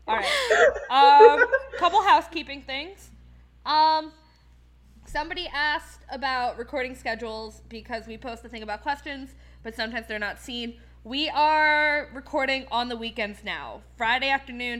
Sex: female